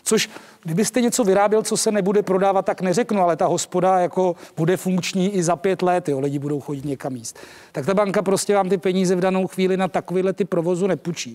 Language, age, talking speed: Czech, 40-59, 215 wpm